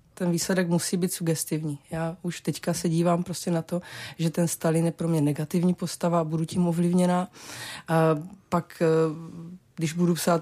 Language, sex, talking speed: Czech, female, 175 wpm